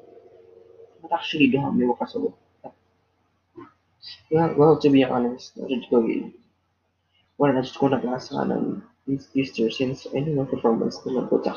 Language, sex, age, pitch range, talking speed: English, female, 20-39, 125-210 Hz, 110 wpm